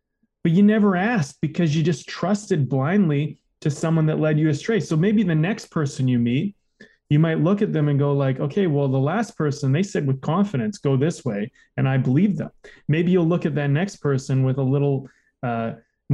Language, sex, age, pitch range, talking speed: English, male, 20-39, 135-185 Hz, 210 wpm